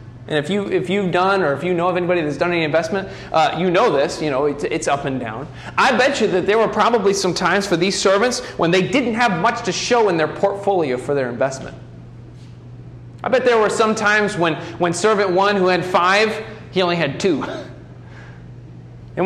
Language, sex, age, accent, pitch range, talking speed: English, male, 30-49, American, 130-190 Hz, 220 wpm